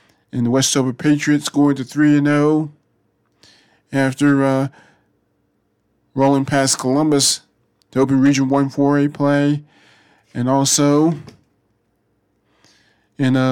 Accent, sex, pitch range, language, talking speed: American, male, 130-145 Hz, English, 105 wpm